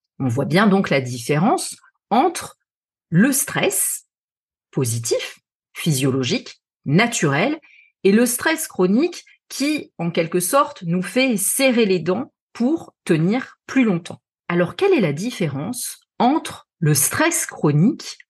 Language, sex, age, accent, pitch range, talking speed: French, female, 40-59, French, 160-240 Hz, 125 wpm